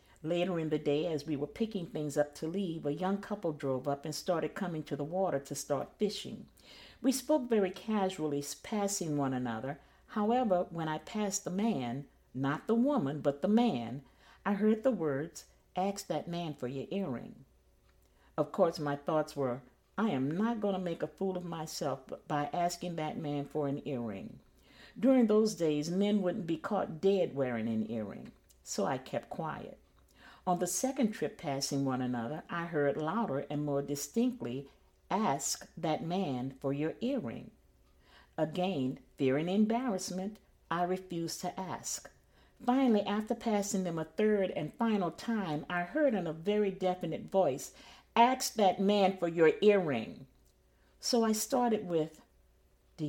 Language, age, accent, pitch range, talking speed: English, 50-69, American, 145-205 Hz, 165 wpm